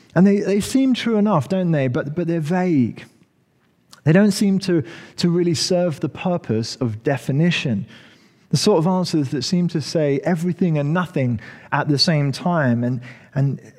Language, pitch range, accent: English, 125-170 Hz, British